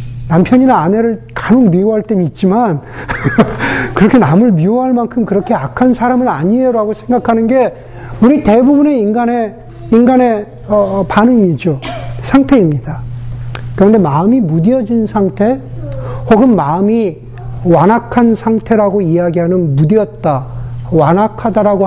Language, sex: Korean, male